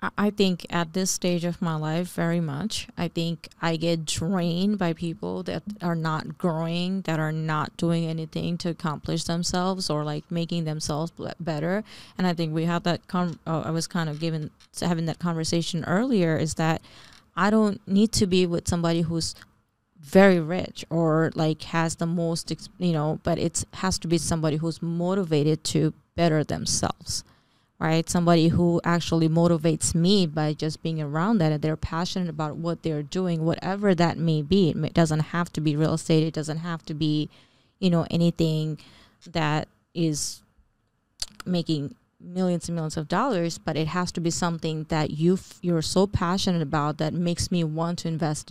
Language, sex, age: English, female, 20-39